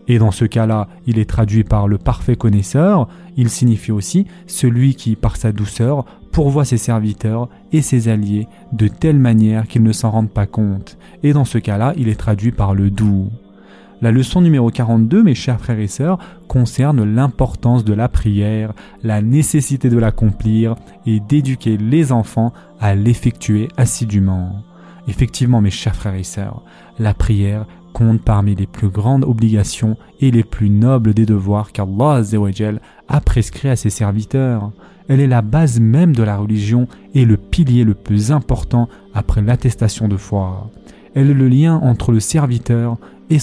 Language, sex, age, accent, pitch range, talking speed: French, male, 20-39, French, 105-130 Hz, 165 wpm